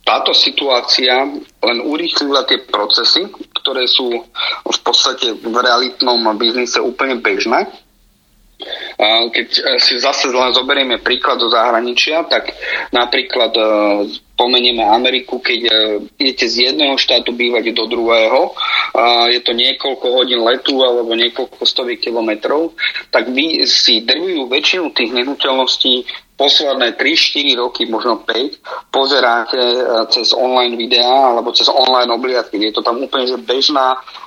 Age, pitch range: 30-49, 115-130 Hz